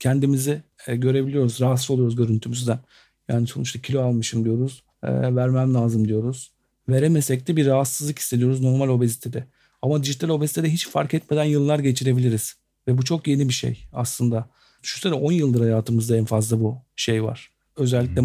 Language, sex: Turkish, male